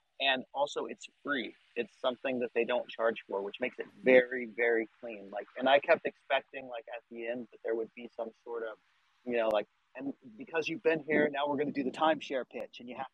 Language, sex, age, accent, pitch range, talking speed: English, male, 30-49, American, 115-150 Hz, 235 wpm